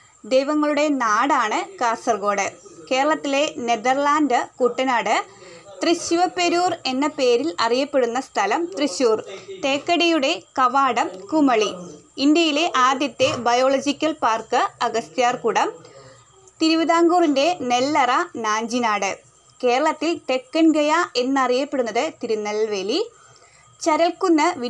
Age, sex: 20-39, female